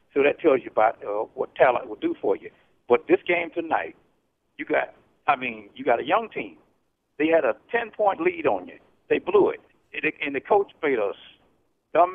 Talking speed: 205 wpm